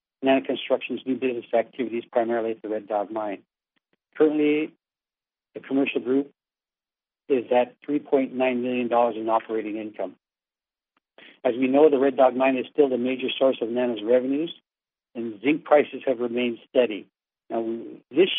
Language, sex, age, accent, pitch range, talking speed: English, male, 60-79, American, 120-140 Hz, 145 wpm